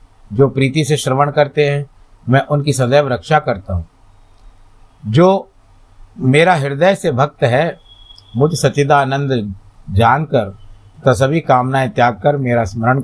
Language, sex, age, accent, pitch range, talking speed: Hindi, male, 50-69, native, 105-125 Hz, 135 wpm